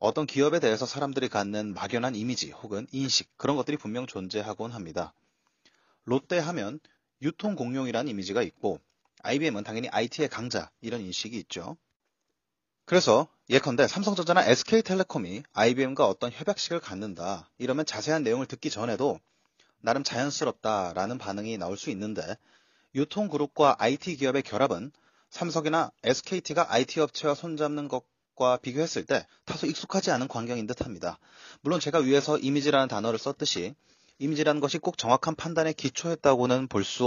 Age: 30-49